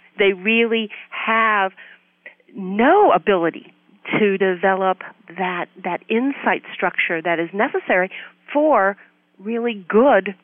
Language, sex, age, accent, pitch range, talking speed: English, female, 40-59, American, 175-220 Hz, 100 wpm